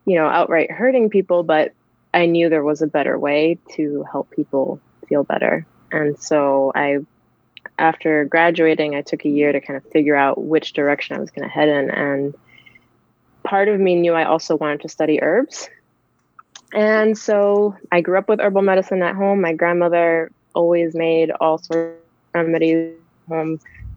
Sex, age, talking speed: female, 20-39, 180 wpm